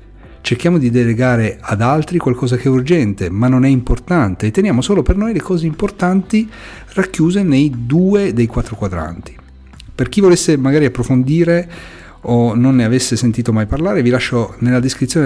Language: Italian